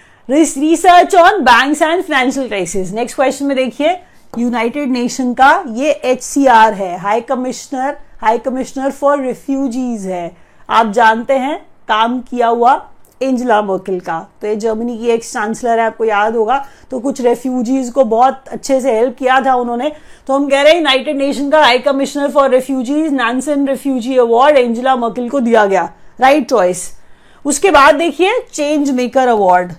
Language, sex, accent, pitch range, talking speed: English, female, Indian, 230-280 Hz, 110 wpm